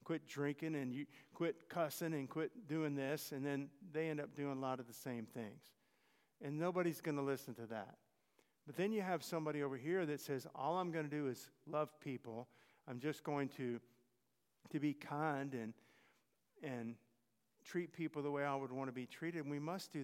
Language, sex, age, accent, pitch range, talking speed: English, male, 50-69, American, 135-170 Hz, 205 wpm